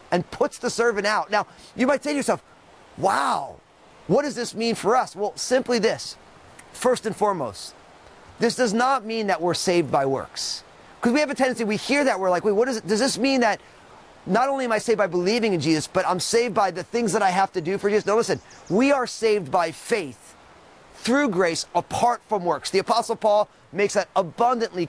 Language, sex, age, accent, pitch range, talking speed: English, male, 30-49, American, 190-245 Hz, 210 wpm